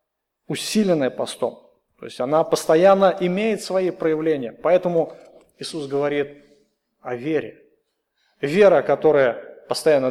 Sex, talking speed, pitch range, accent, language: male, 100 wpm, 155-220 Hz, native, Russian